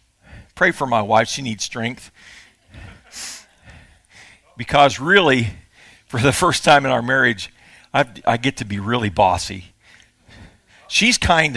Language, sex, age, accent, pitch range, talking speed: English, male, 50-69, American, 110-175 Hz, 125 wpm